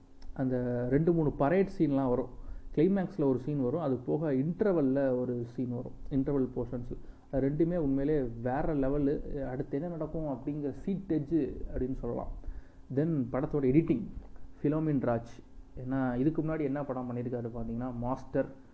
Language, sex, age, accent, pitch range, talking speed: Tamil, male, 30-49, native, 125-145 Hz, 135 wpm